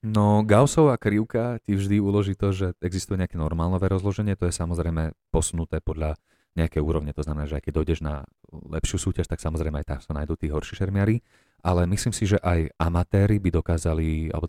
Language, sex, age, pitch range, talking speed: Slovak, male, 30-49, 80-95 Hz, 185 wpm